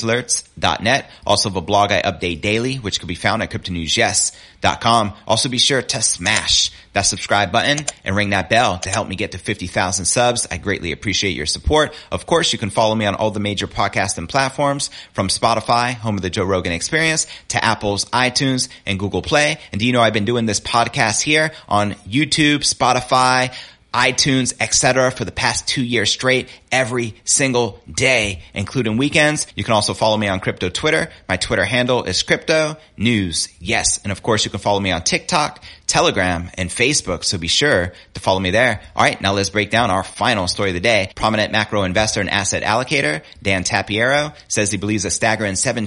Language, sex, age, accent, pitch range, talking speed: English, male, 30-49, American, 95-120 Hz, 195 wpm